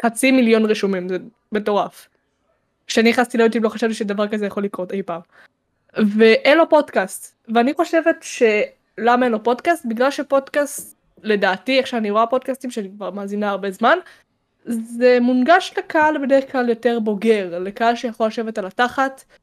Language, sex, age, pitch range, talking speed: Hebrew, female, 10-29, 215-270 Hz, 160 wpm